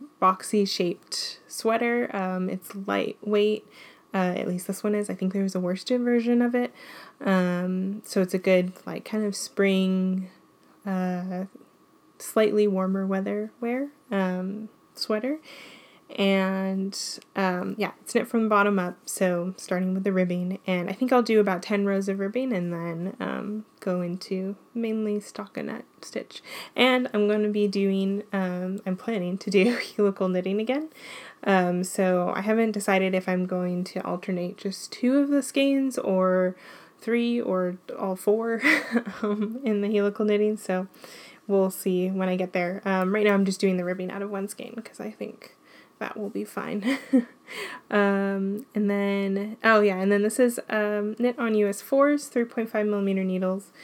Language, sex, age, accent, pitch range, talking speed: English, female, 10-29, American, 190-225 Hz, 165 wpm